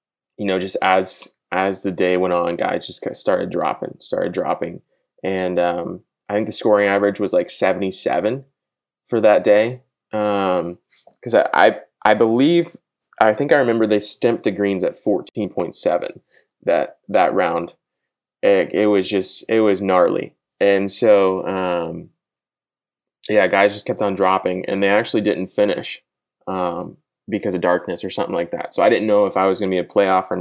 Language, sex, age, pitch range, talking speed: English, male, 20-39, 95-105 Hz, 185 wpm